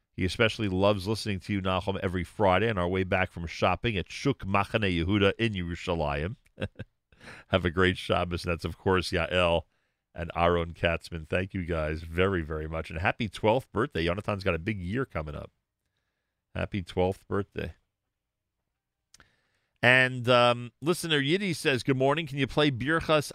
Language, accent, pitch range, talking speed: English, American, 85-120 Hz, 160 wpm